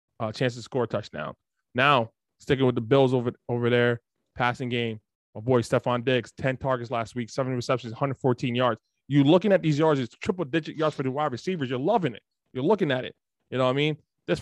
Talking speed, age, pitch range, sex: 220 wpm, 20-39, 120-165 Hz, male